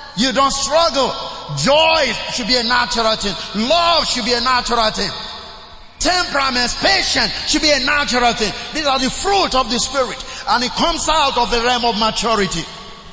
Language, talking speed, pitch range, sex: English, 175 wpm, 175-240 Hz, male